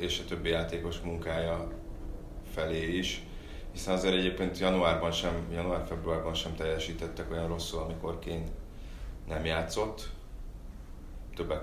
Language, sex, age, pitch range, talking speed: Hungarian, male, 30-49, 85-95 Hz, 115 wpm